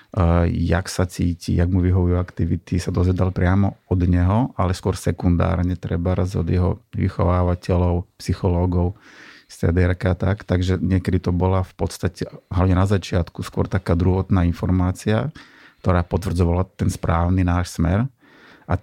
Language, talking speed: Slovak, 140 wpm